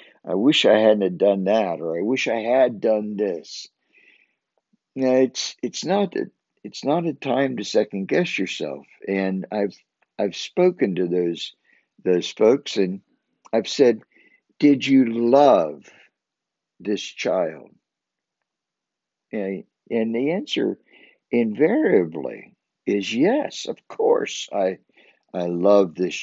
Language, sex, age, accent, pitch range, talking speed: English, male, 60-79, American, 95-135 Hz, 130 wpm